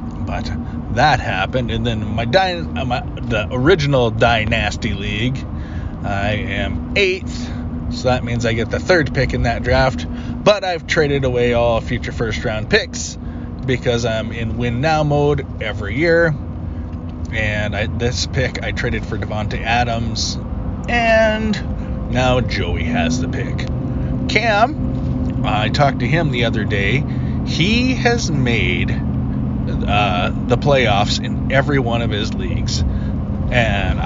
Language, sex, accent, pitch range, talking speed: English, male, American, 90-120 Hz, 140 wpm